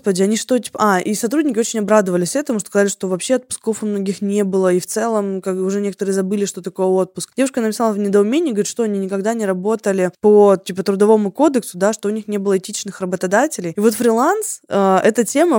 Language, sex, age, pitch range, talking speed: Russian, female, 20-39, 195-230 Hz, 225 wpm